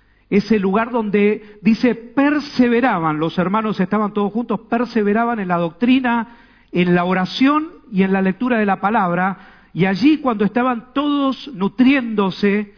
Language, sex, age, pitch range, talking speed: Spanish, male, 50-69, 185-240 Hz, 140 wpm